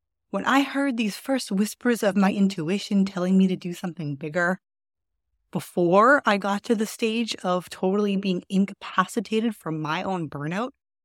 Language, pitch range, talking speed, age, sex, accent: English, 160-220 Hz, 155 wpm, 30-49, female, American